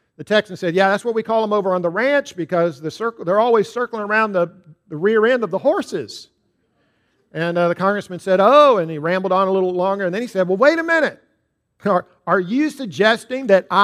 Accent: American